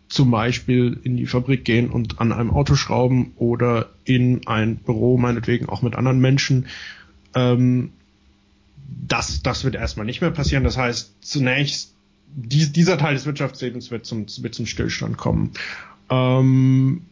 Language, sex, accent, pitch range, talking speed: German, male, German, 115-135 Hz, 150 wpm